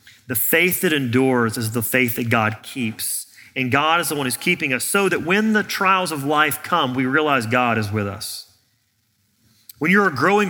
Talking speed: 205 wpm